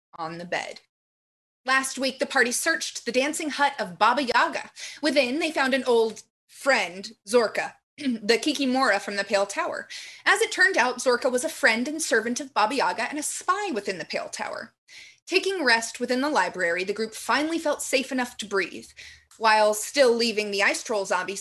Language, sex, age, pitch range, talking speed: English, female, 20-39, 215-300 Hz, 190 wpm